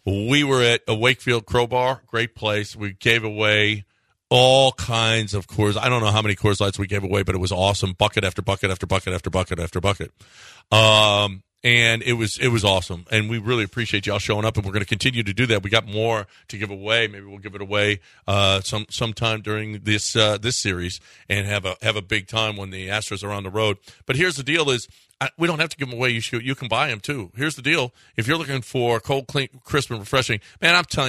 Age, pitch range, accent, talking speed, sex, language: 40-59, 100-135 Hz, American, 245 wpm, male, English